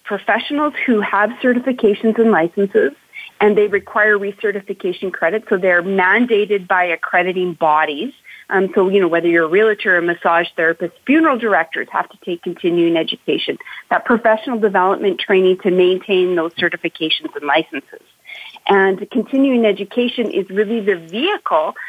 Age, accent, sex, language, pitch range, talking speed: 30-49, American, female, English, 185-230 Hz, 145 wpm